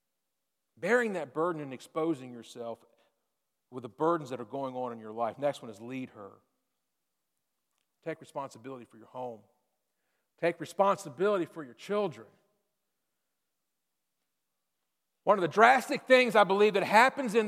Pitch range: 145-235 Hz